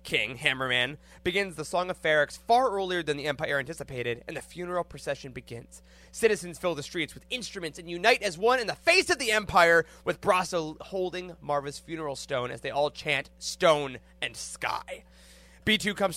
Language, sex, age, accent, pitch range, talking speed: English, male, 20-39, American, 140-200 Hz, 180 wpm